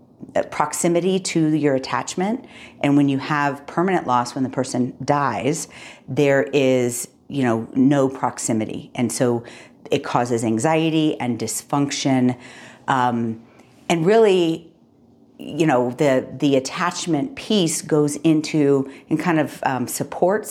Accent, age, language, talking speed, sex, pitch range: American, 40-59, English, 125 wpm, female, 130-165 Hz